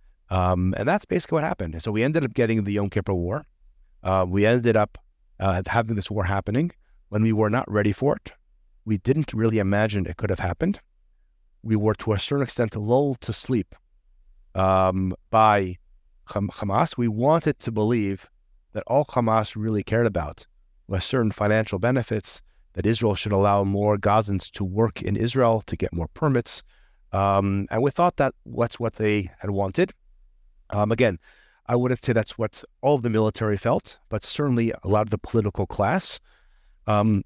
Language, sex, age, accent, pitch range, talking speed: English, male, 30-49, American, 95-115 Hz, 180 wpm